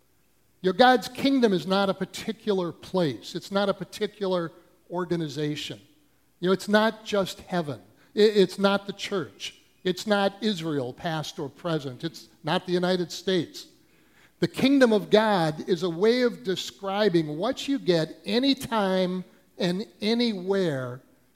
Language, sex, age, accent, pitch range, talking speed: English, male, 60-79, American, 155-205 Hz, 140 wpm